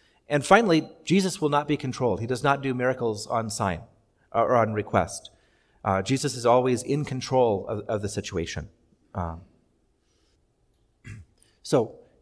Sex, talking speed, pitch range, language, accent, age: male, 140 wpm, 115-155 Hz, English, American, 40-59